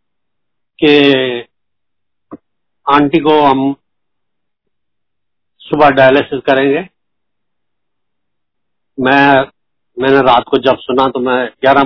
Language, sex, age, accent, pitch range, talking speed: Hindi, male, 60-79, native, 120-140 Hz, 80 wpm